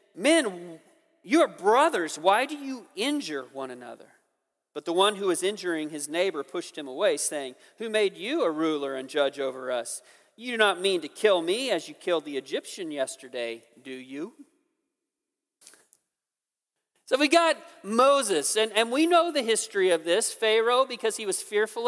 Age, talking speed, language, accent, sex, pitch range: 40-59, 175 wpm, English, American, male, 155-240 Hz